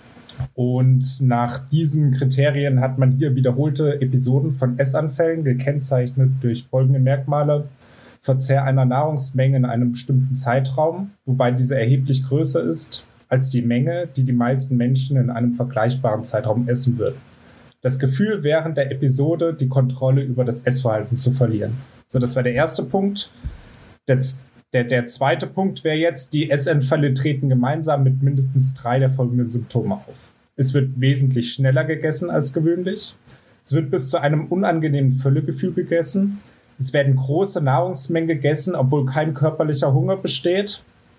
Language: German